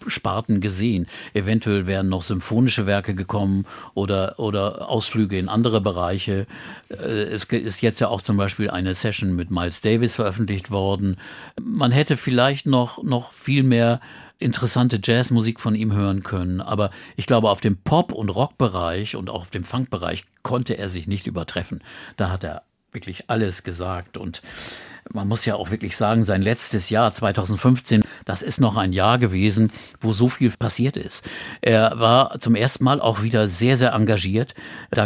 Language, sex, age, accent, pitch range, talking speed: German, male, 50-69, German, 95-115 Hz, 170 wpm